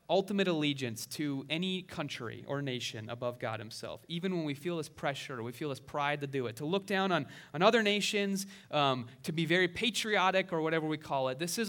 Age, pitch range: 30-49, 135-180 Hz